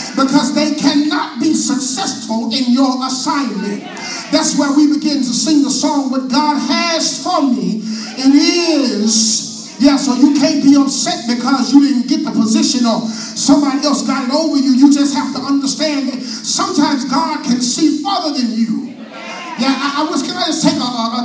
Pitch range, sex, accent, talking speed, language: 235-295 Hz, male, American, 185 wpm, English